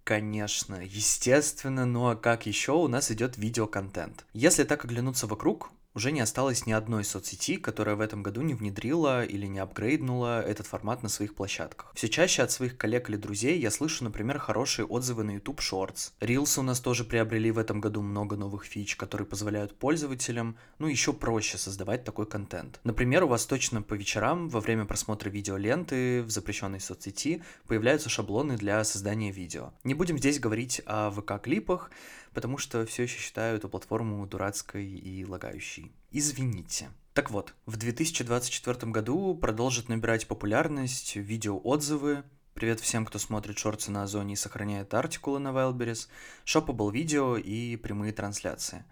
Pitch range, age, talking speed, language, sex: 105-125 Hz, 20-39, 160 wpm, Russian, male